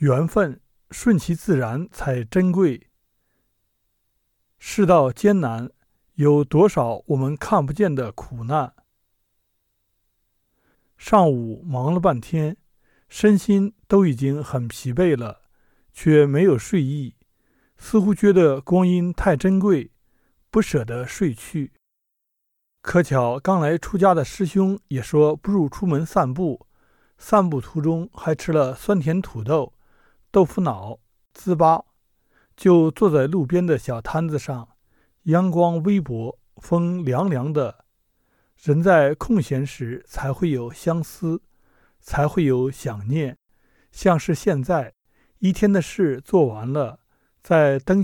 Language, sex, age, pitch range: Chinese, male, 50-69, 120-180 Hz